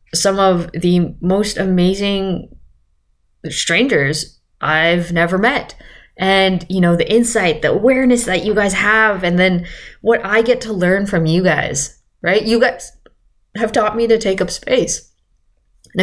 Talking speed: 155 wpm